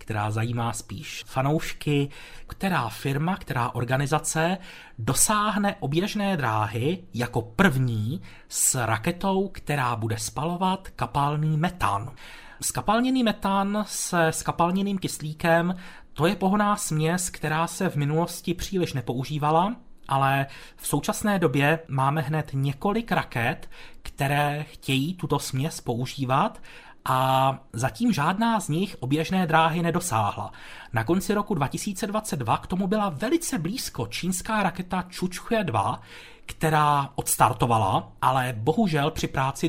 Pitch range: 125-180 Hz